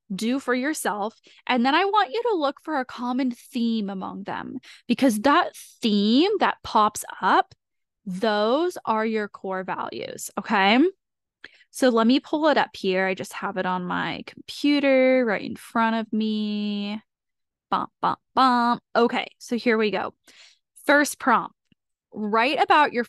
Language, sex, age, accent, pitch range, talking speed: English, female, 10-29, American, 205-260 Hz, 150 wpm